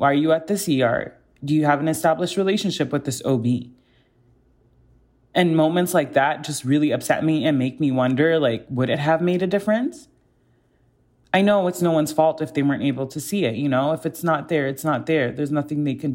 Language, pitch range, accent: English, 135-170 Hz, American